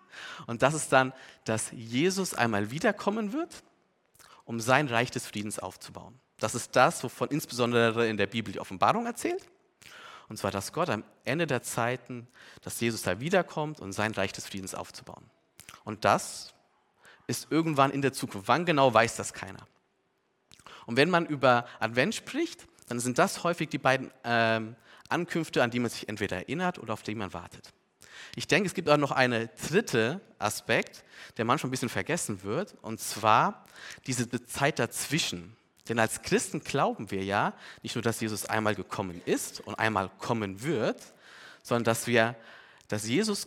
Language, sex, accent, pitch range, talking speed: German, male, German, 110-150 Hz, 170 wpm